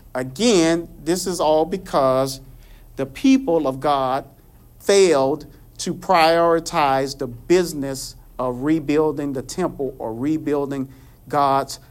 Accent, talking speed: American, 105 wpm